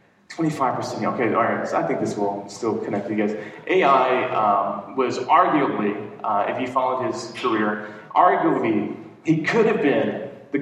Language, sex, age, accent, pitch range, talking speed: English, male, 30-49, American, 110-150 Hz, 160 wpm